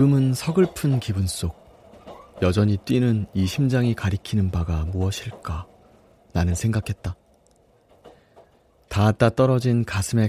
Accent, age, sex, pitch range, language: native, 30-49, male, 90-110 Hz, Korean